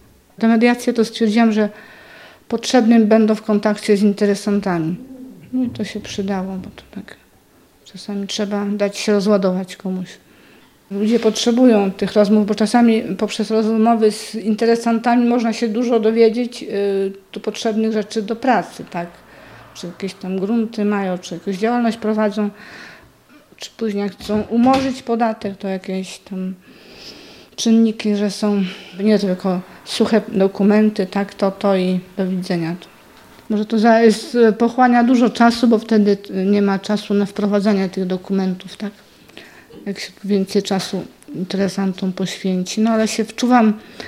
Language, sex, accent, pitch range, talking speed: Polish, female, native, 195-225 Hz, 135 wpm